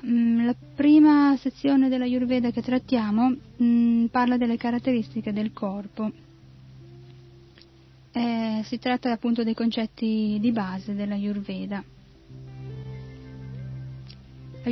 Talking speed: 95 wpm